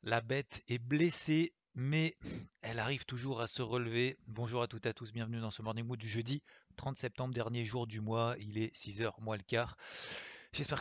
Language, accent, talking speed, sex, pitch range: French, French, 205 wpm, male, 115-135 Hz